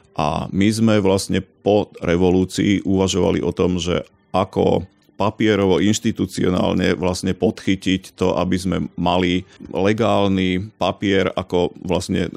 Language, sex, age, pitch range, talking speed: Slovak, male, 40-59, 90-105 Hz, 110 wpm